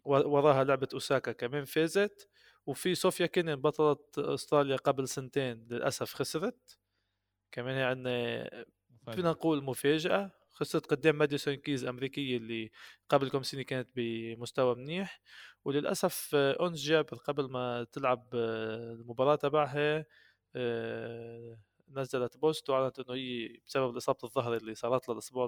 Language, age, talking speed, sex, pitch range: Arabic, 20-39, 120 wpm, male, 120-145 Hz